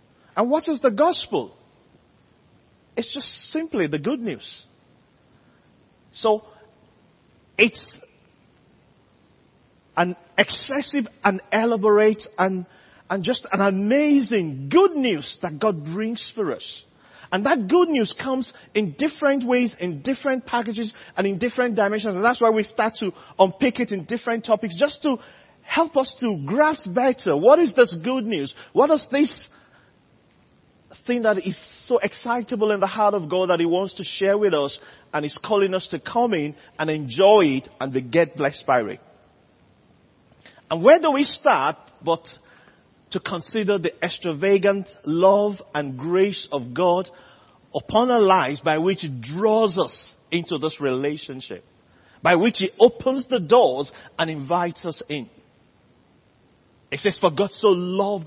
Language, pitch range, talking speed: English, 170-240 Hz, 150 wpm